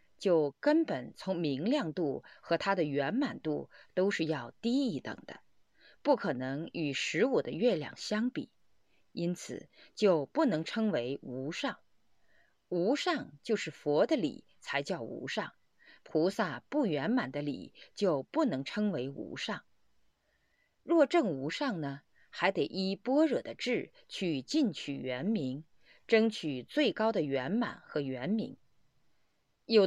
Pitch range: 160-250 Hz